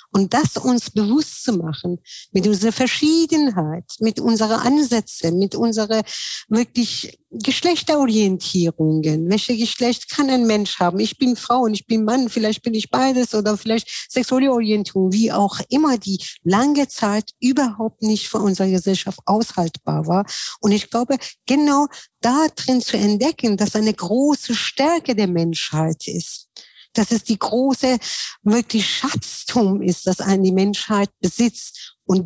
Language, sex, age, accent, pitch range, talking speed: German, female, 50-69, German, 195-245 Hz, 145 wpm